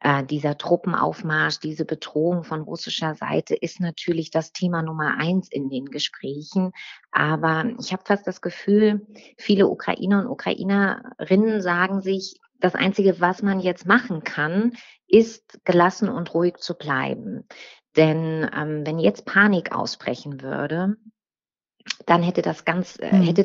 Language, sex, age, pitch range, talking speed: German, female, 30-49, 175-205 Hz, 135 wpm